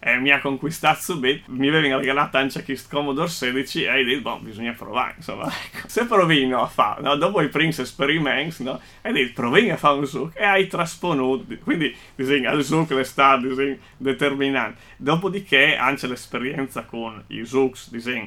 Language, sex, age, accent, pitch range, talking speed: Italian, male, 30-49, native, 115-135 Hz, 185 wpm